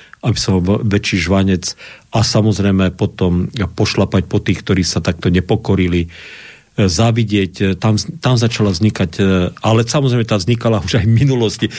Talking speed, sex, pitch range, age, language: 145 wpm, male, 95-115 Hz, 50-69, Slovak